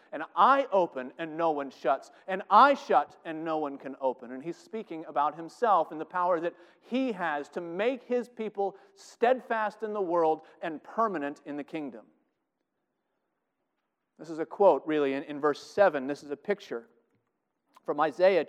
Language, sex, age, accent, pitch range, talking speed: English, male, 40-59, American, 155-195 Hz, 175 wpm